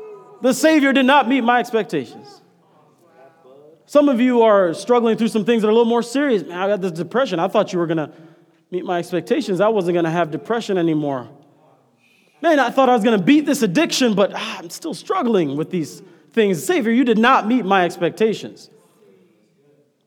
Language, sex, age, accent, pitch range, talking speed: English, male, 30-49, American, 175-225 Hz, 200 wpm